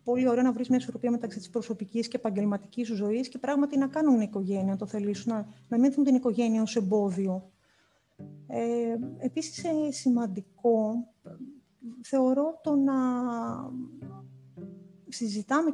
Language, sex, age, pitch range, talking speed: Greek, female, 30-49, 210-275 Hz, 130 wpm